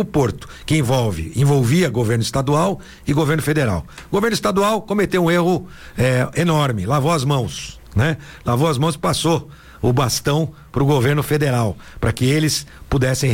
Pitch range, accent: 125-165 Hz, Brazilian